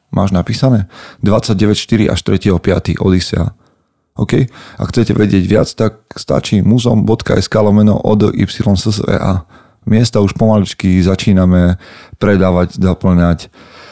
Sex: male